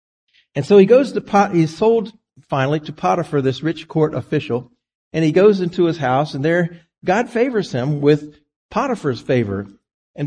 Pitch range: 125-165 Hz